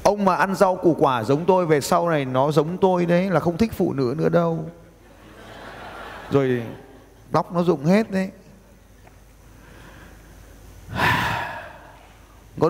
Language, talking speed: Vietnamese, 135 wpm